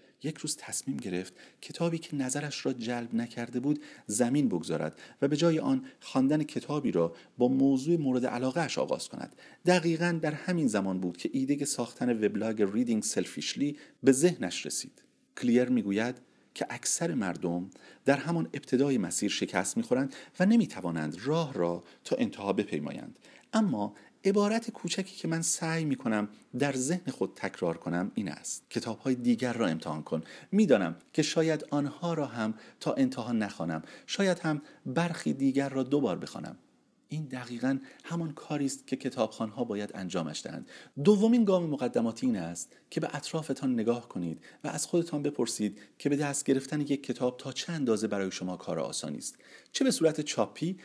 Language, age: Persian, 40-59